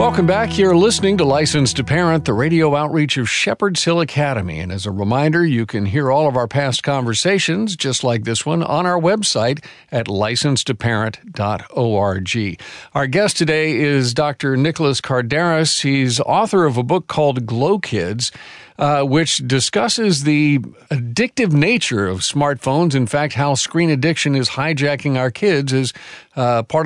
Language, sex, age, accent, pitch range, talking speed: English, male, 50-69, American, 125-160 Hz, 160 wpm